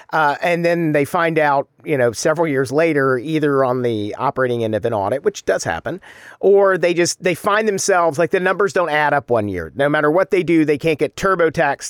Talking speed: 225 wpm